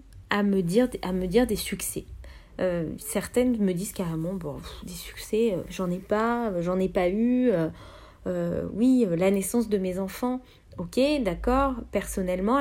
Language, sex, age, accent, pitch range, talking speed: English, female, 20-39, French, 175-235 Hz, 170 wpm